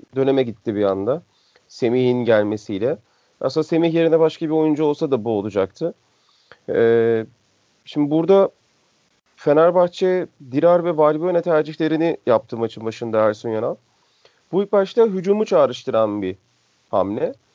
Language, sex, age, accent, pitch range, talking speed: Turkish, male, 40-59, native, 140-185 Hz, 120 wpm